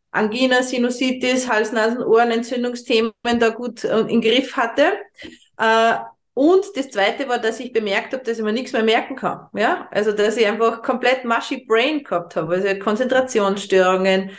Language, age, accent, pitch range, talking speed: German, 30-49, Austrian, 205-245 Hz, 155 wpm